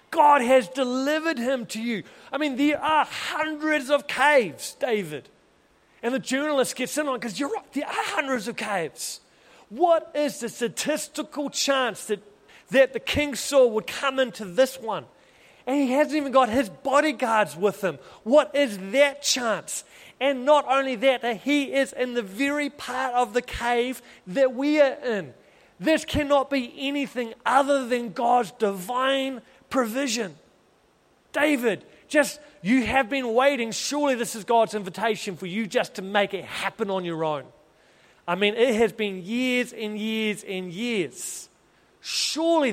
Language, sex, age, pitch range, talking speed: English, male, 30-49, 220-280 Hz, 160 wpm